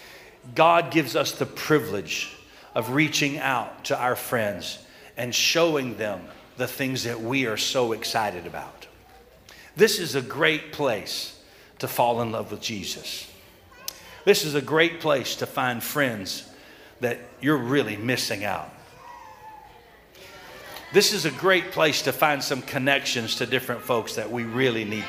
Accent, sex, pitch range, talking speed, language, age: American, male, 120-165 Hz, 150 wpm, English, 50-69